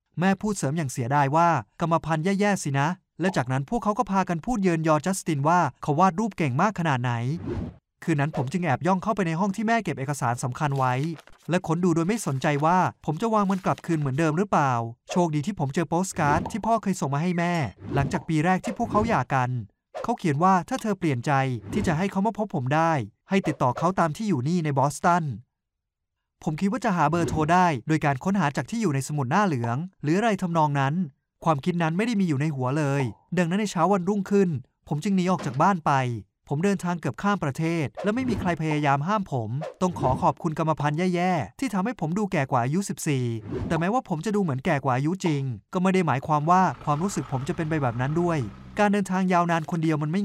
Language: Thai